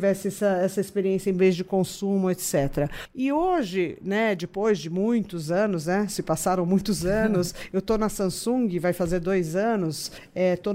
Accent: Brazilian